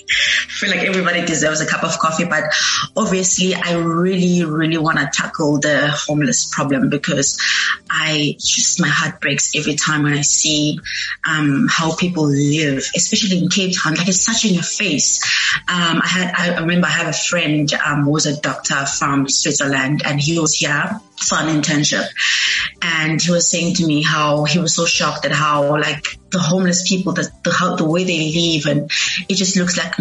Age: 20-39